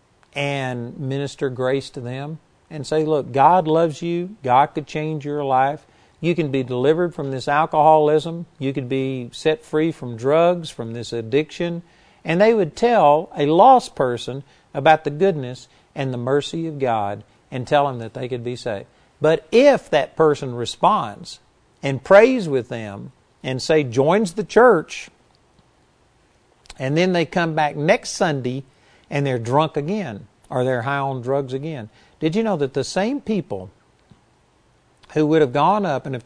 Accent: American